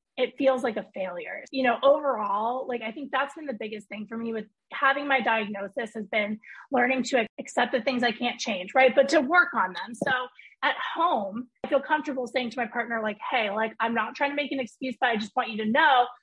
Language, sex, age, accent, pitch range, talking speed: English, female, 20-39, American, 225-275 Hz, 240 wpm